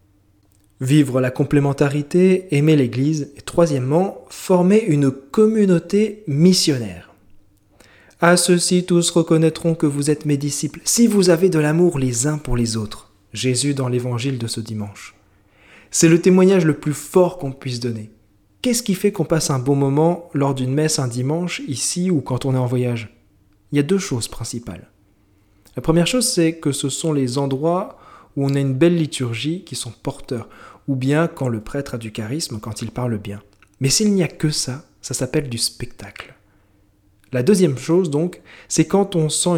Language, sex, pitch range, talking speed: French, male, 120-165 Hz, 180 wpm